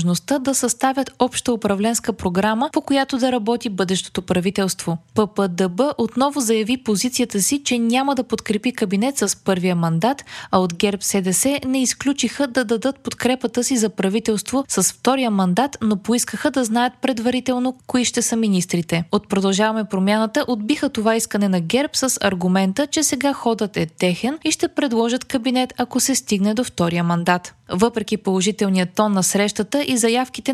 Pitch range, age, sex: 200-260 Hz, 20-39, female